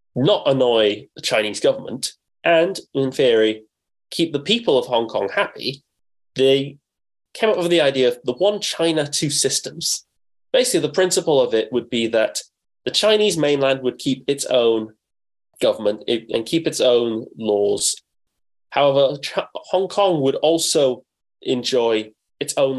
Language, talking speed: English, 145 wpm